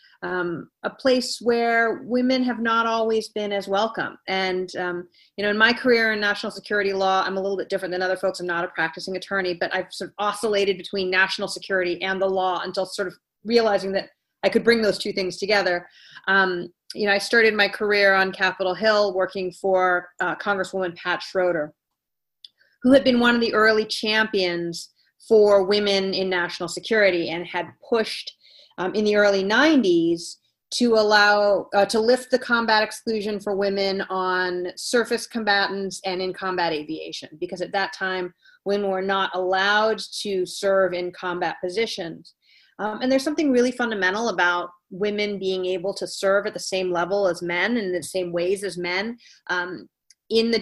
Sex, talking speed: female, 180 wpm